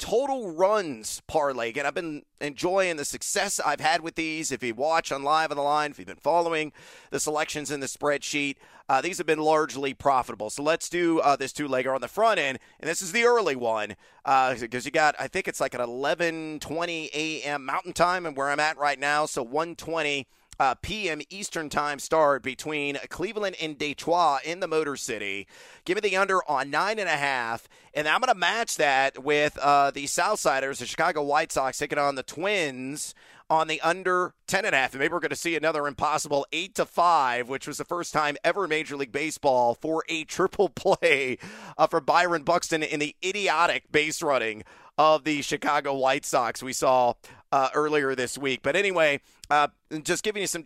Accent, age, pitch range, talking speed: American, 40-59, 140-165 Hz, 205 wpm